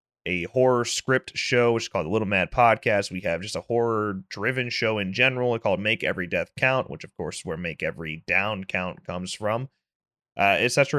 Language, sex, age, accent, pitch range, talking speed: English, male, 30-49, American, 100-130 Hz, 220 wpm